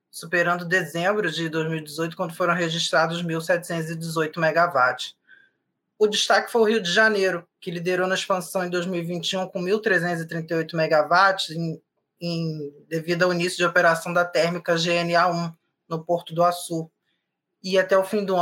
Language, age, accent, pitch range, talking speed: Portuguese, 20-39, Brazilian, 165-195 Hz, 145 wpm